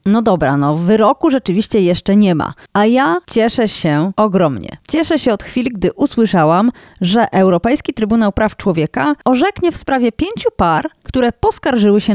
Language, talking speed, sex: Polish, 160 wpm, female